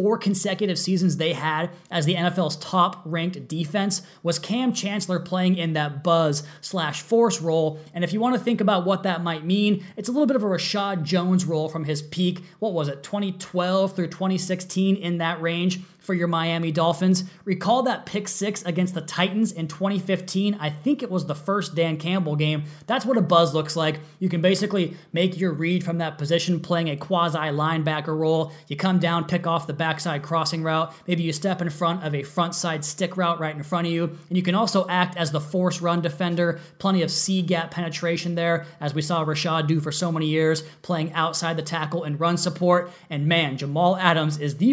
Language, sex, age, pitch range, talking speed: English, male, 20-39, 160-185 Hz, 210 wpm